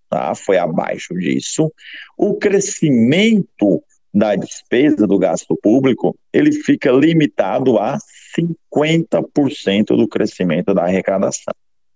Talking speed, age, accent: 100 wpm, 50-69, Brazilian